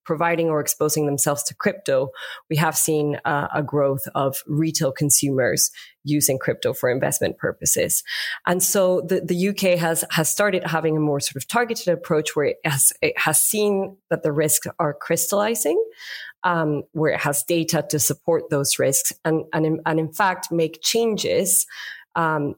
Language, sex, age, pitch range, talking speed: English, female, 30-49, 145-175 Hz, 170 wpm